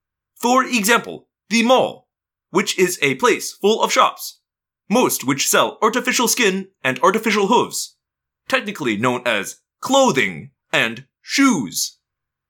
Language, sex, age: English, male, 30-49